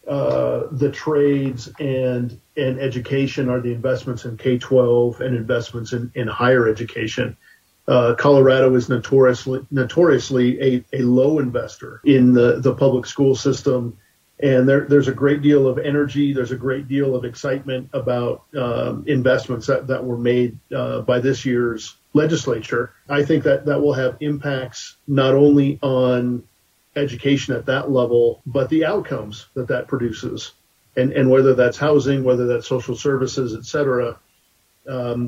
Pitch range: 120-140 Hz